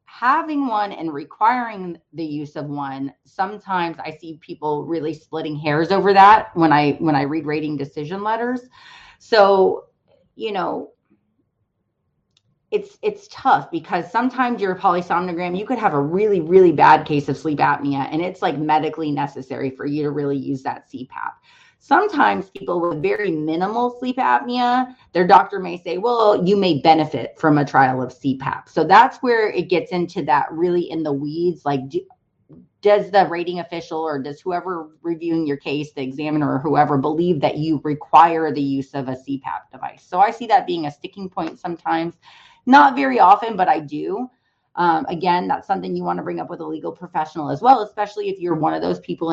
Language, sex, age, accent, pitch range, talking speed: English, female, 30-49, American, 150-210 Hz, 185 wpm